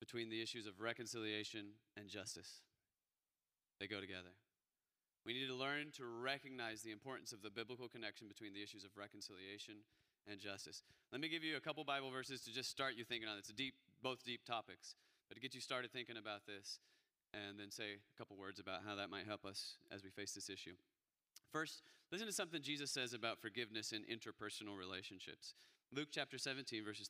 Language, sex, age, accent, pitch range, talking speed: English, male, 30-49, American, 105-140 Hz, 195 wpm